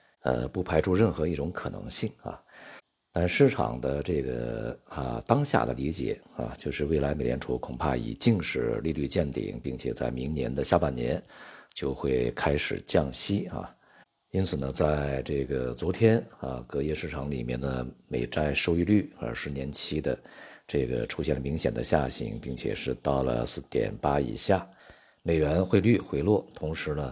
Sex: male